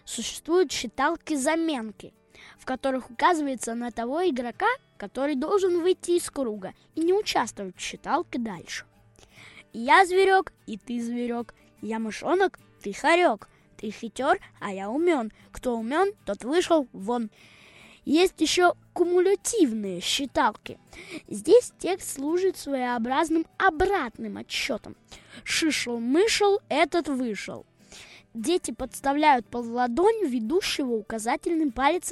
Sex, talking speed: female, 110 wpm